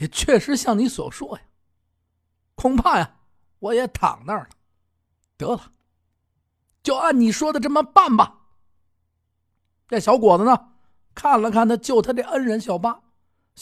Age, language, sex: 50-69, Chinese, male